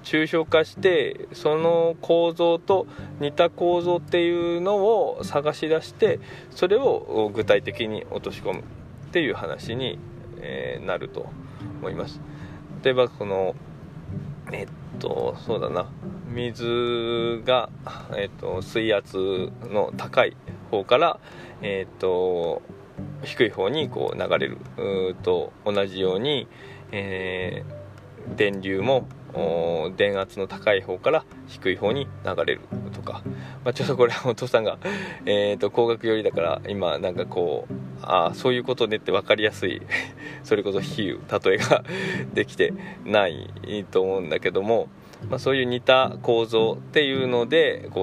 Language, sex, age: Japanese, male, 20-39